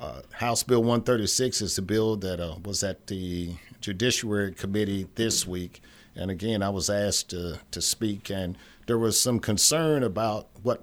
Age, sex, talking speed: 50-69, male, 175 wpm